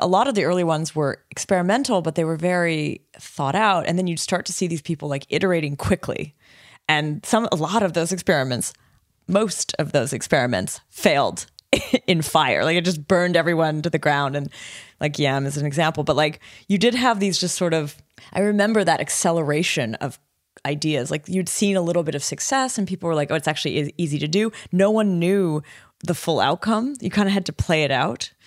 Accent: American